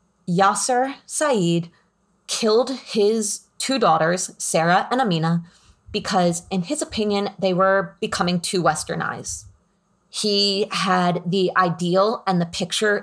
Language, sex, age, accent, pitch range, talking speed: English, female, 30-49, American, 175-205 Hz, 115 wpm